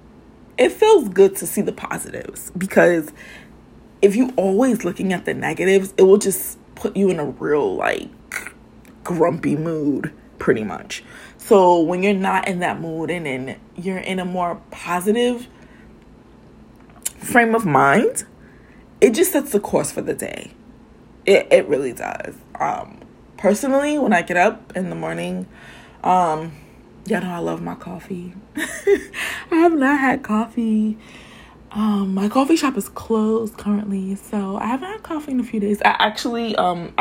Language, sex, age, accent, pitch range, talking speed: English, female, 20-39, American, 180-255 Hz, 155 wpm